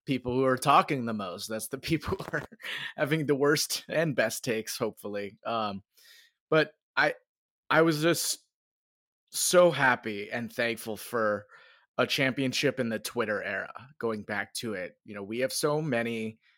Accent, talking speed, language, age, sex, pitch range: American, 165 wpm, English, 30-49, male, 110-145 Hz